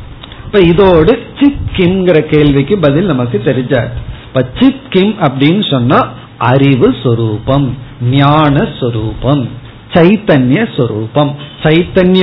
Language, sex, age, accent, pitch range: Tamil, male, 50-69, native, 130-190 Hz